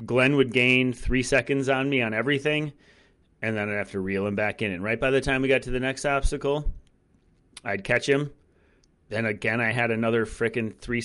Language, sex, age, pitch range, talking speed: English, male, 30-49, 105-135 Hz, 210 wpm